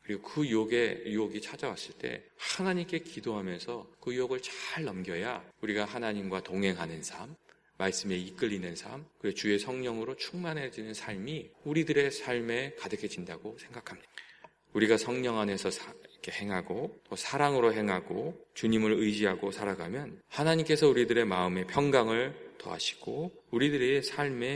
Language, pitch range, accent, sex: Korean, 95-140 Hz, native, male